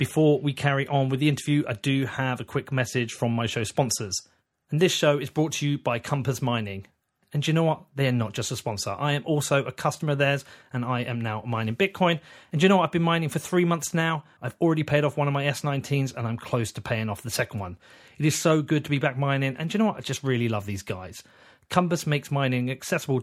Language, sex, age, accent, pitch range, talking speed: English, male, 30-49, British, 125-160 Hz, 255 wpm